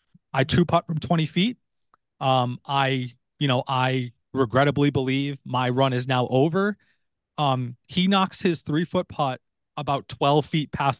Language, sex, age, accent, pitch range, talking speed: English, male, 30-49, American, 130-165 Hz, 160 wpm